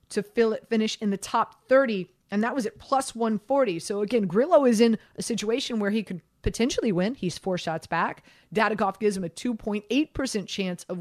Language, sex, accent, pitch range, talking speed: English, female, American, 185-225 Hz, 190 wpm